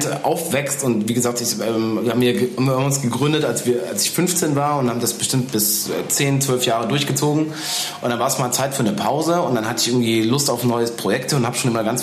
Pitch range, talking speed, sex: 115-145 Hz, 235 wpm, male